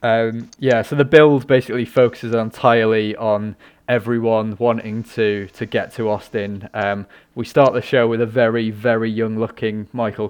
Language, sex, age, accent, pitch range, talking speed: English, male, 20-39, British, 105-120 Hz, 165 wpm